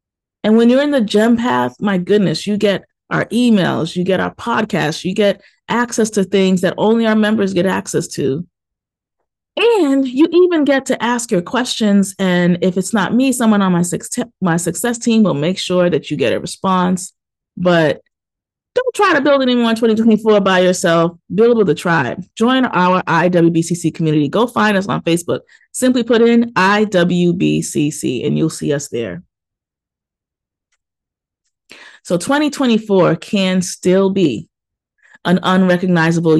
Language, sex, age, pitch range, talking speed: English, female, 30-49, 175-235 Hz, 155 wpm